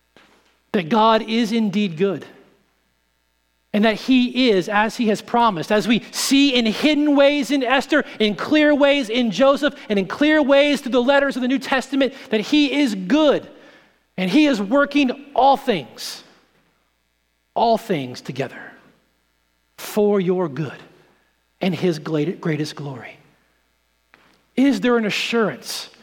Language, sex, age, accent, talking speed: English, male, 40-59, American, 140 wpm